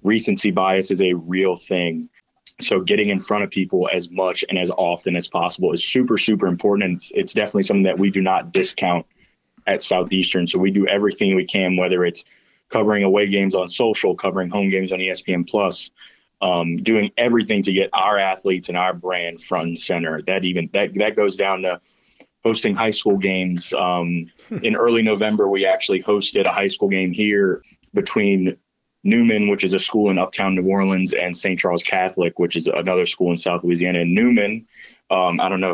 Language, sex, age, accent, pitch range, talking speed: English, male, 20-39, American, 90-100 Hz, 195 wpm